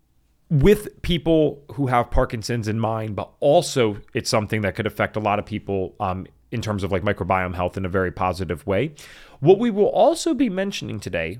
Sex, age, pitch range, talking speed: male, 30-49, 105-145 Hz, 195 wpm